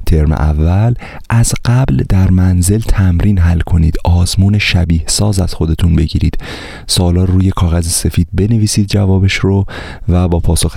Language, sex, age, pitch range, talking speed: Persian, male, 30-49, 85-100 Hz, 145 wpm